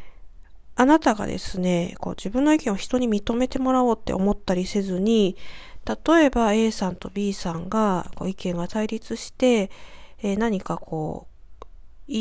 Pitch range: 185-250 Hz